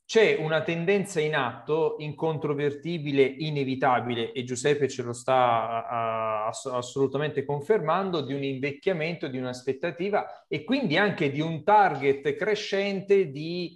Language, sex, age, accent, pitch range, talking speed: Italian, male, 40-59, native, 130-170 Hz, 120 wpm